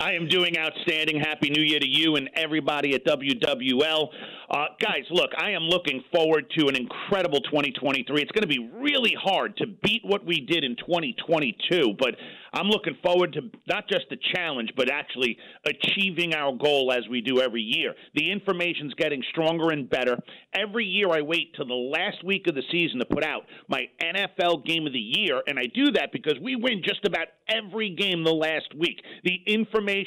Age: 50-69